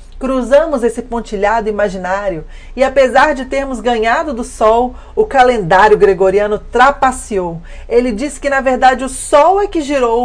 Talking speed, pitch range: 145 wpm, 205-275 Hz